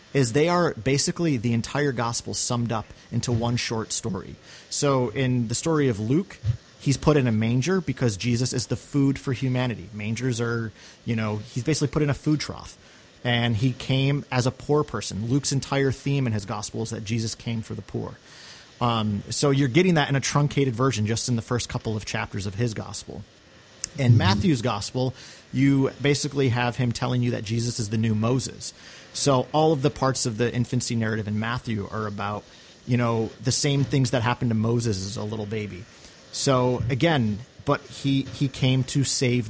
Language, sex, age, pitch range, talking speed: English, male, 30-49, 110-135 Hz, 200 wpm